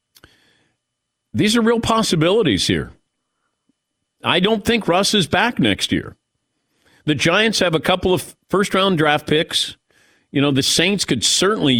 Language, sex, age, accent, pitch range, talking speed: English, male, 50-69, American, 120-170 Hz, 140 wpm